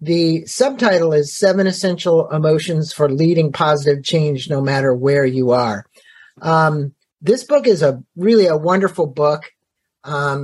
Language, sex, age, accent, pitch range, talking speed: English, male, 50-69, American, 135-165 Hz, 145 wpm